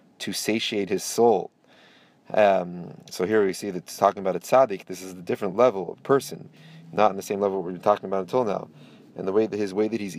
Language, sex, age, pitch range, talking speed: English, male, 30-49, 95-115 Hz, 240 wpm